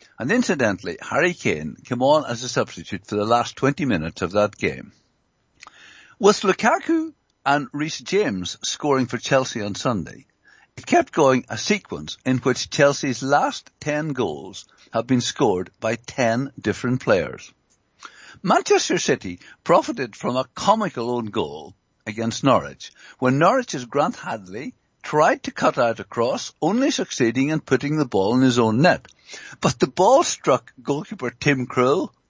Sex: male